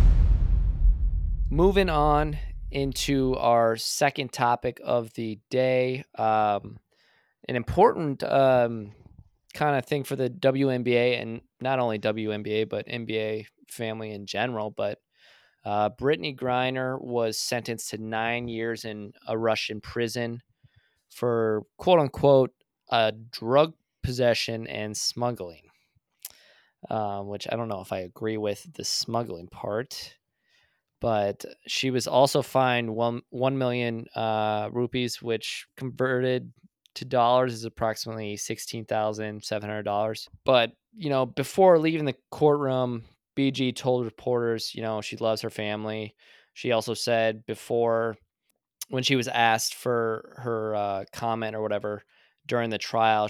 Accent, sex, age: American, male, 20-39